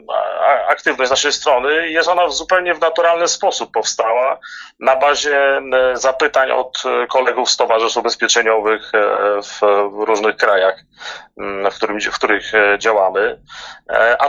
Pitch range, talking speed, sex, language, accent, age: 110-140 Hz, 115 wpm, male, Polish, native, 30-49